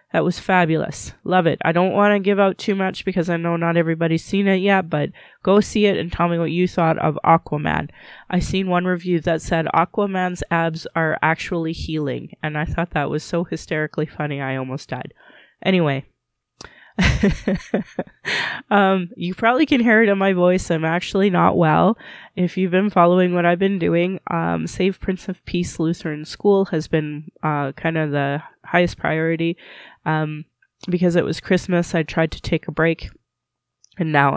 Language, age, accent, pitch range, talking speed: English, 20-39, American, 150-185 Hz, 180 wpm